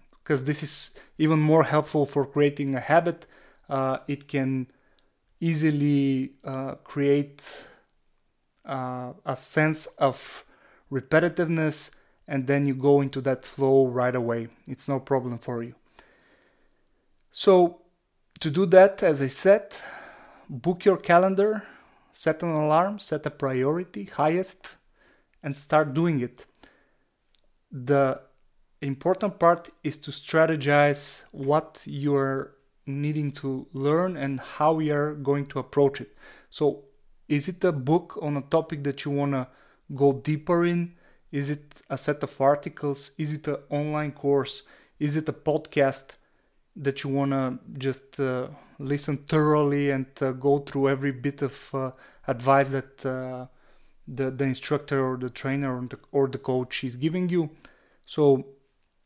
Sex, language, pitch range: male, English, 135-155 Hz